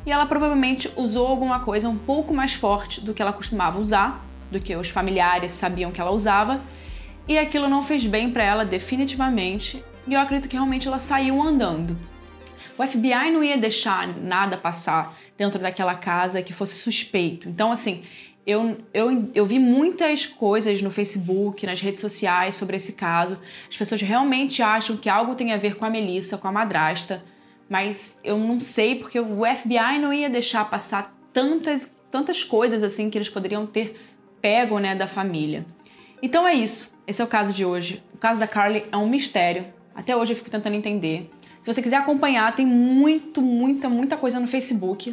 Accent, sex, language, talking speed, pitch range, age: Brazilian, female, Portuguese, 185 wpm, 195-255 Hz, 20-39